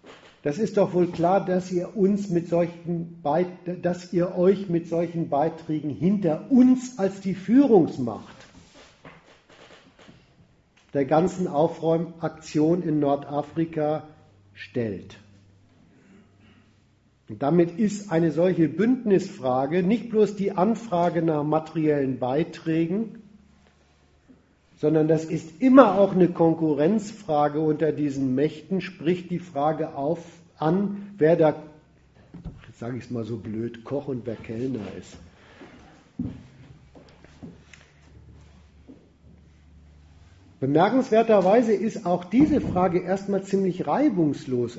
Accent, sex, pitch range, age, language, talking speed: German, male, 125-185 Hz, 50-69, German, 95 wpm